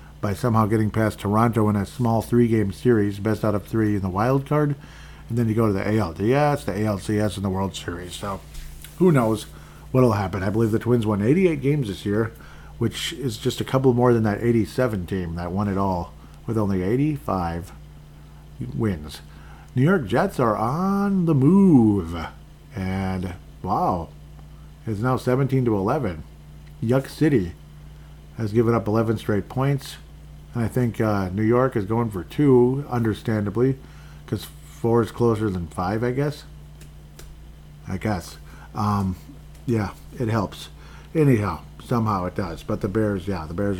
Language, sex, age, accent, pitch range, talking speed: English, male, 50-69, American, 85-120 Hz, 165 wpm